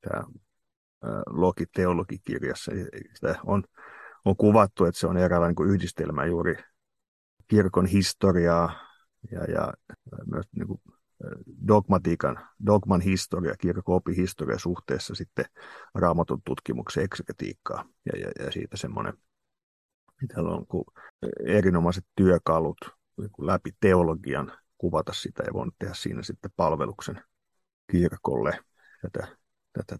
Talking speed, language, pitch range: 105 wpm, Finnish, 85-105 Hz